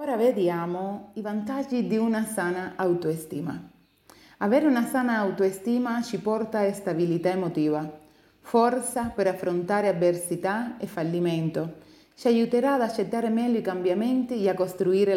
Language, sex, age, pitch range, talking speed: Italian, female, 30-49, 175-235 Hz, 130 wpm